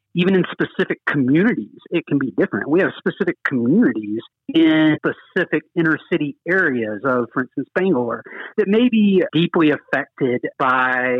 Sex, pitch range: male, 125-165 Hz